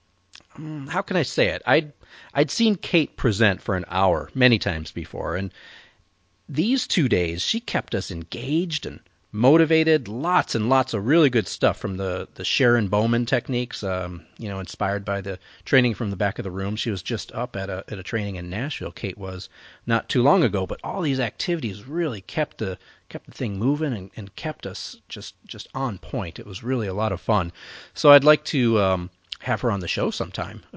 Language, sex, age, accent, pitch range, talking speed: English, male, 40-59, American, 95-135 Hz, 205 wpm